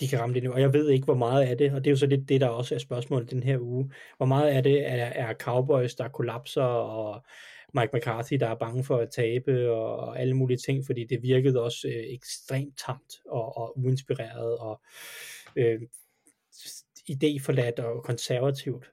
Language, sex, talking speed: Danish, male, 205 wpm